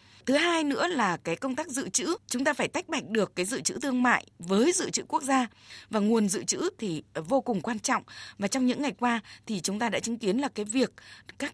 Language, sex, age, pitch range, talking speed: Vietnamese, female, 20-39, 195-265 Hz, 255 wpm